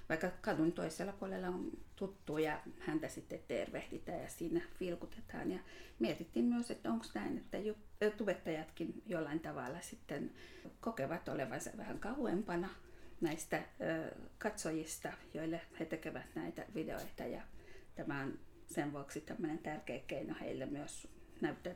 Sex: female